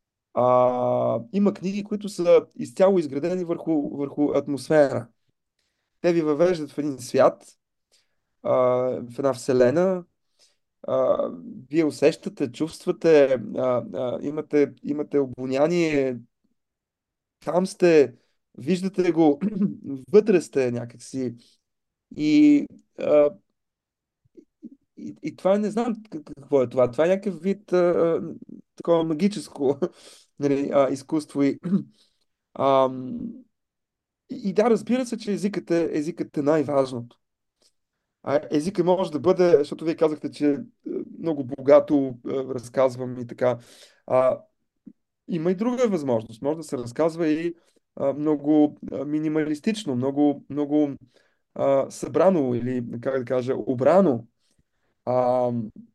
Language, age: Bulgarian, 30-49